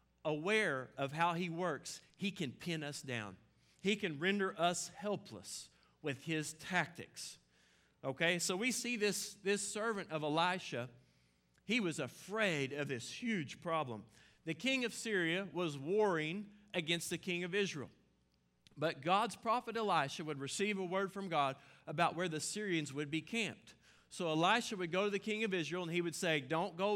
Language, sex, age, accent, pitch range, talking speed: English, male, 50-69, American, 150-200 Hz, 170 wpm